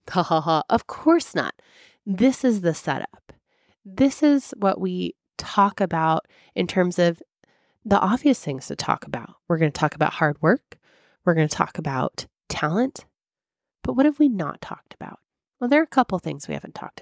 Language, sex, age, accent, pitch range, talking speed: English, female, 20-39, American, 170-240 Hz, 195 wpm